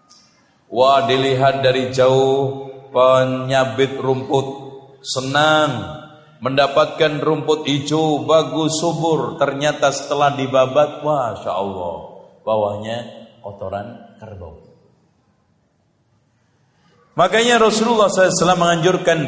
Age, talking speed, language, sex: 50-69, 75 wpm, Malay, male